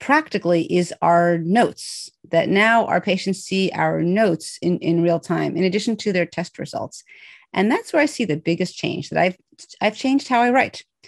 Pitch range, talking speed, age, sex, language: 170-210 Hz, 195 wpm, 40-59, female, English